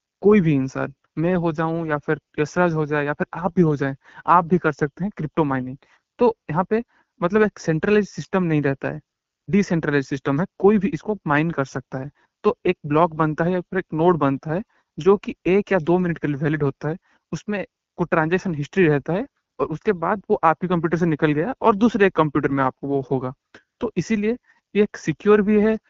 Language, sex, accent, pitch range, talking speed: Hindi, male, native, 150-185 Hz, 210 wpm